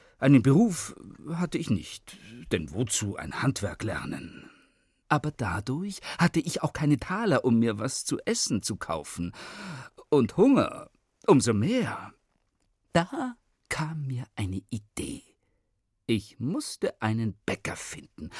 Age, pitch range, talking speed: 50-69, 105-165 Hz, 125 wpm